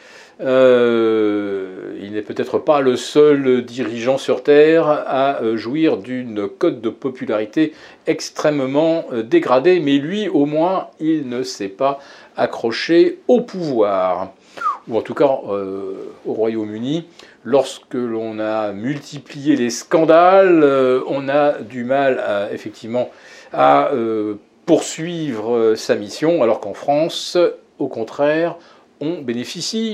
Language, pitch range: French, 120-175 Hz